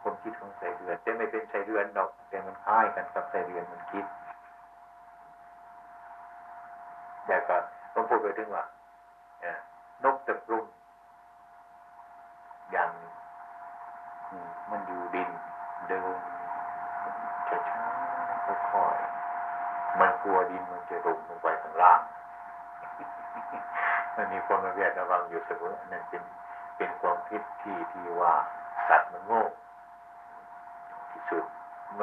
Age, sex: 60-79, male